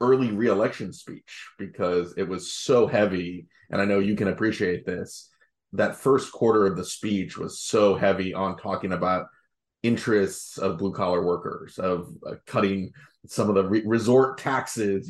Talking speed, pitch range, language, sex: 160 wpm, 95-115 Hz, English, male